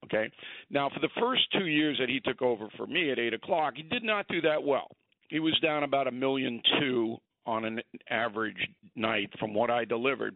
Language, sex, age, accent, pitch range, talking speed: English, male, 50-69, American, 120-150 Hz, 215 wpm